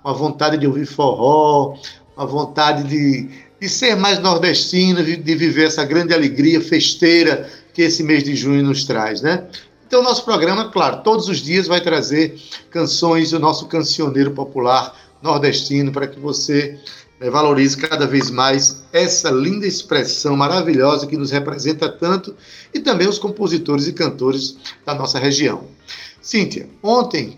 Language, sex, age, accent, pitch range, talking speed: Portuguese, male, 60-79, Brazilian, 140-175 Hz, 155 wpm